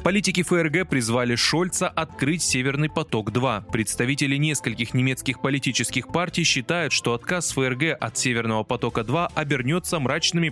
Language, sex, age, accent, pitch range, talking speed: Russian, male, 20-39, native, 120-160 Hz, 120 wpm